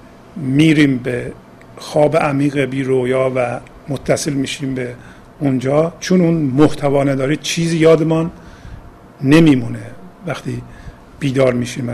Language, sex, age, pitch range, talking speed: Persian, male, 50-69, 130-155 Hz, 100 wpm